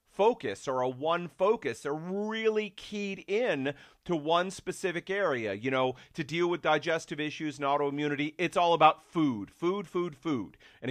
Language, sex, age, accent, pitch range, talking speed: English, male, 40-59, American, 150-200 Hz, 165 wpm